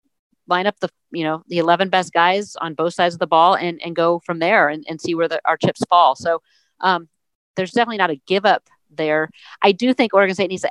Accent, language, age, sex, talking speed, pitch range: American, English, 40-59, female, 245 wpm, 155-180 Hz